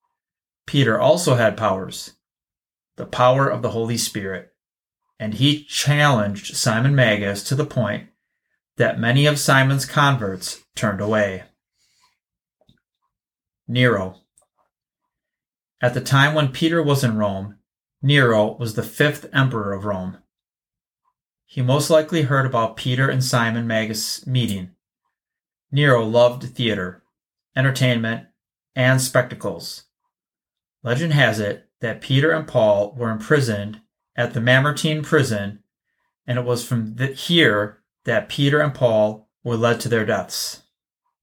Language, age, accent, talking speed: English, 30-49, American, 120 wpm